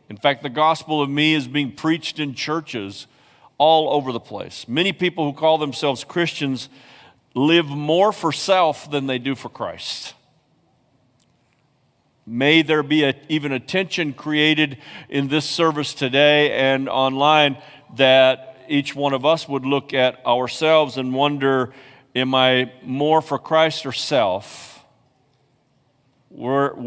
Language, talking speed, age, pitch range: English, 140 wpm, 50-69, 125-145 Hz